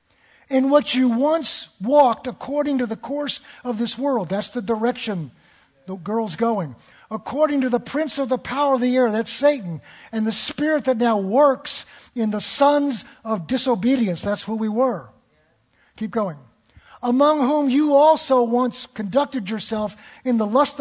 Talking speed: 165 wpm